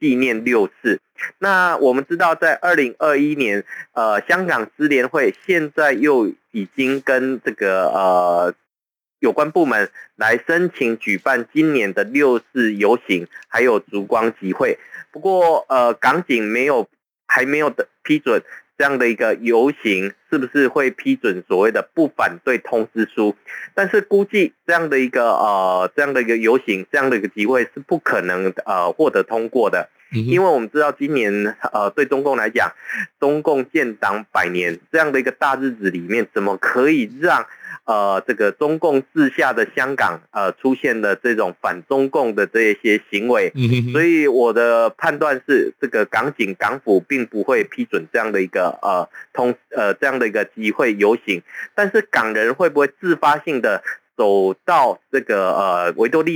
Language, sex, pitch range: Chinese, male, 115-165 Hz